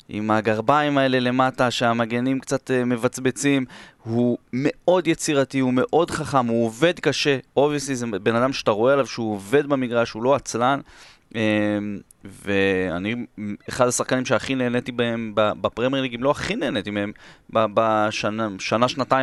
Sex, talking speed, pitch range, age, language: male, 130 wpm, 110-130 Hz, 20-39, Hebrew